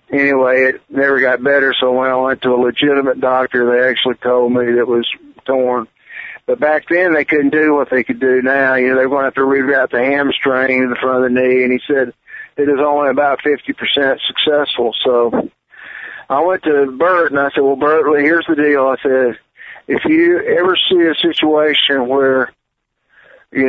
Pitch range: 130-145 Hz